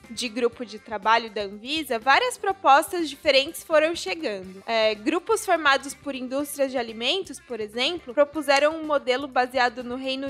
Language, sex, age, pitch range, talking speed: Portuguese, female, 20-39, 250-315 Hz, 145 wpm